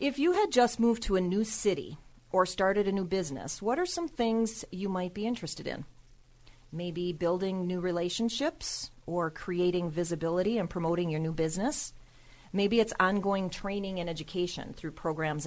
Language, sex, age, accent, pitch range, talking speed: English, female, 40-59, American, 160-200 Hz, 165 wpm